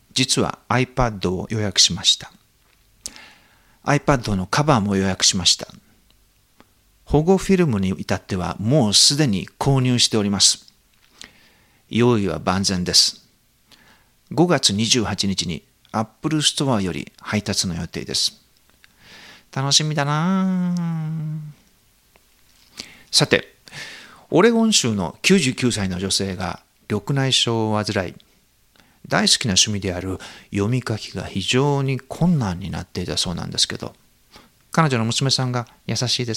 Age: 50-69